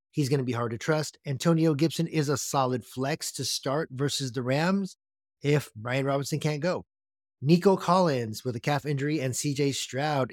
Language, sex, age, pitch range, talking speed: English, male, 30-49, 125-150 Hz, 185 wpm